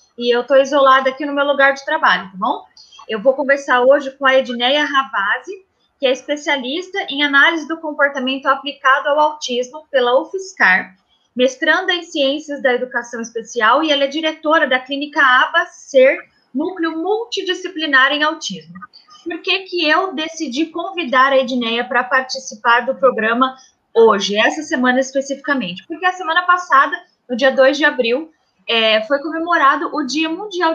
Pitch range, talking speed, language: 260-315 Hz, 155 wpm, Portuguese